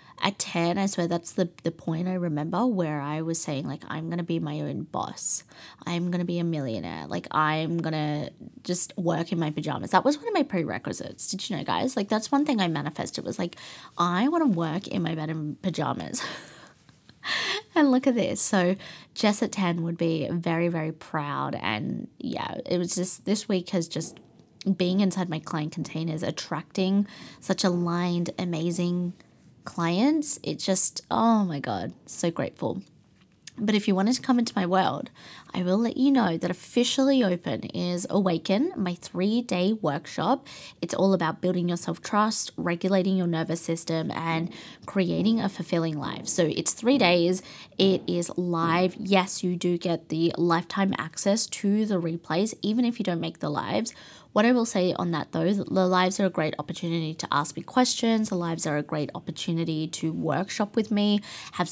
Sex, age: female, 20-39